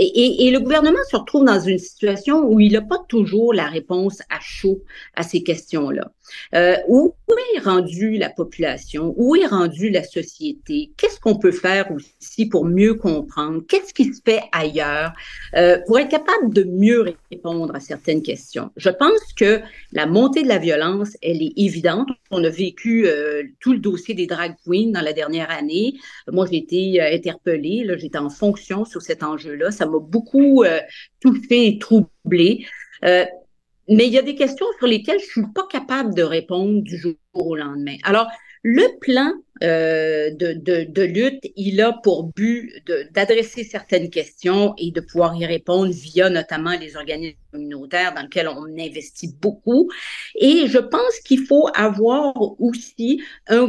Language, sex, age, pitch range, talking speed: French, female, 50-69, 170-245 Hz, 175 wpm